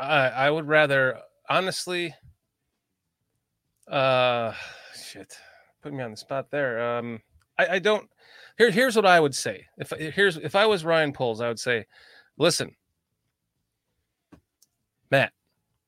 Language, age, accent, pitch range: English, 30-49, American, 125-175 Hz